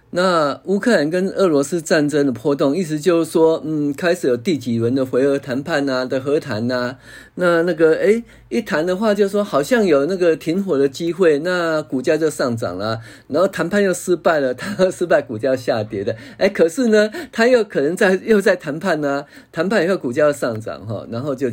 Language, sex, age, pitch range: Chinese, male, 50-69, 120-180 Hz